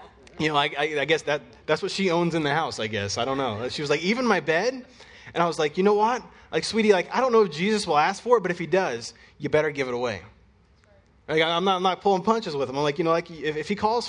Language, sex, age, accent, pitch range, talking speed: English, male, 20-39, American, 125-195 Hz, 305 wpm